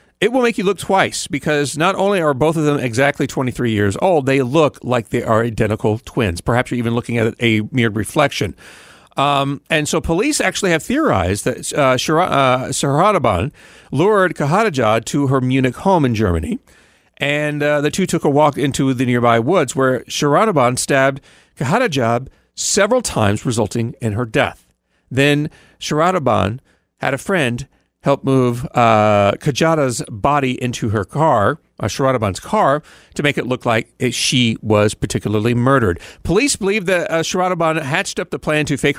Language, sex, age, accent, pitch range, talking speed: English, male, 40-59, American, 110-150 Hz, 170 wpm